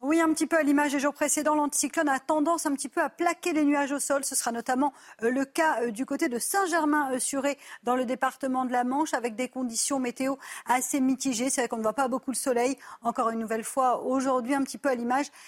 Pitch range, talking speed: 240-290 Hz, 245 wpm